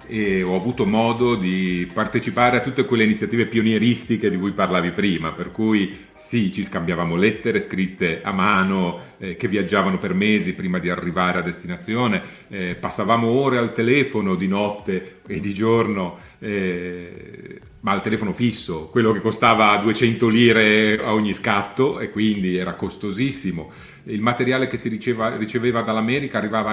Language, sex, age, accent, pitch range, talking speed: Italian, male, 40-59, native, 95-130 Hz, 155 wpm